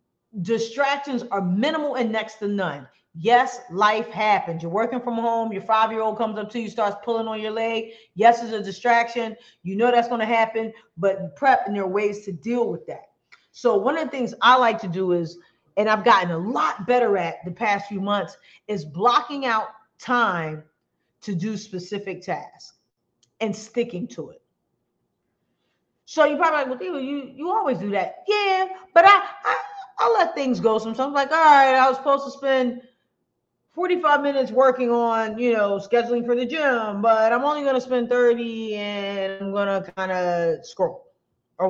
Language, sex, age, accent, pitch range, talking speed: English, female, 40-59, American, 195-250 Hz, 190 wpm